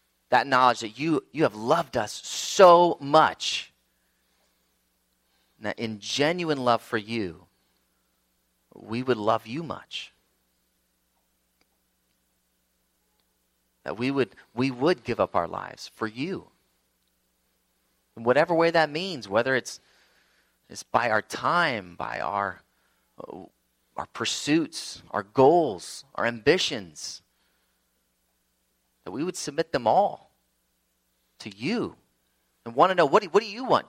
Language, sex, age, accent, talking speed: English, male, 30-49, American, 125 wpm